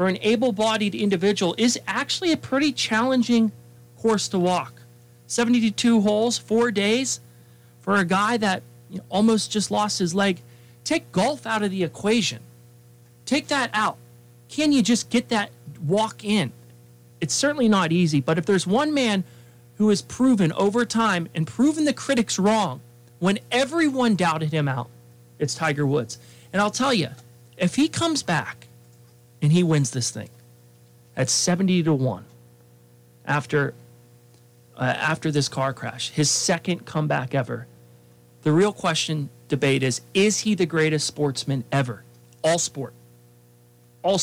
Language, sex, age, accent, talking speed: English, male, 40-59, American, 150 wpm